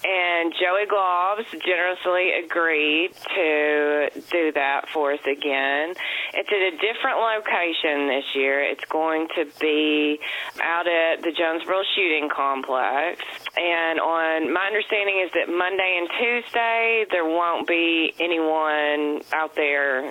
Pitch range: 150-185 Hz